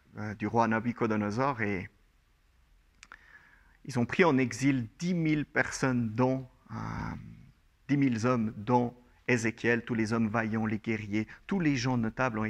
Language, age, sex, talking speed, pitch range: French, 50-69, male, 150 wpm, 110-145 Hz